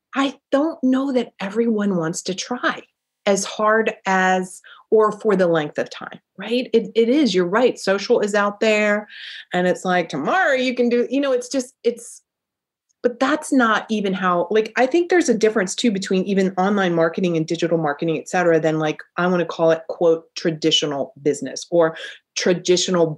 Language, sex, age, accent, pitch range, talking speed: English, female, 30-49, American, 165-235 Hz, 185 wpm